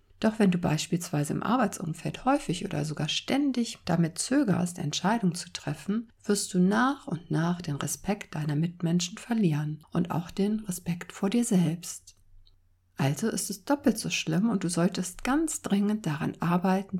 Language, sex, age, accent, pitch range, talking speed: German, female, 60-79, German, 160-200 Hz, 160 wpm